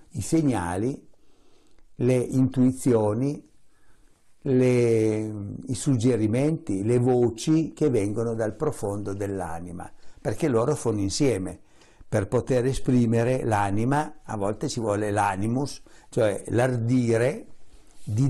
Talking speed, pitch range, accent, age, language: 95 wpm, 105-130 Hz, native, 60-79, Italian